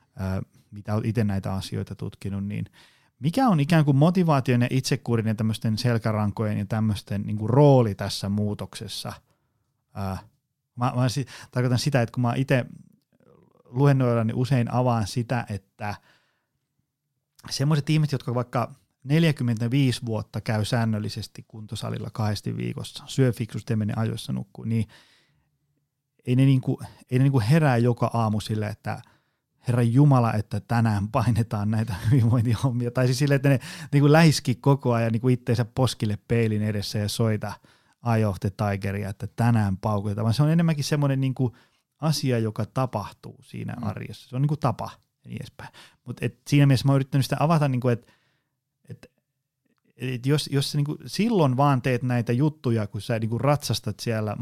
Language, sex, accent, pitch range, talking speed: Finnish, male, native, 110-140 Hz, 155 wpm